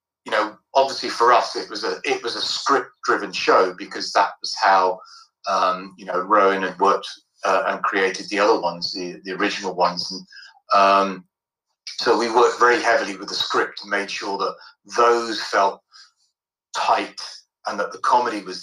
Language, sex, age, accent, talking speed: English, male, 40-59, British, 180 wpm